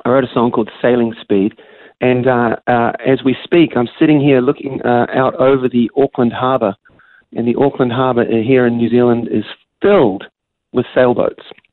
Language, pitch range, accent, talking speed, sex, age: English, 110-130 Hz, Australian, 180 wpm, male, 40-59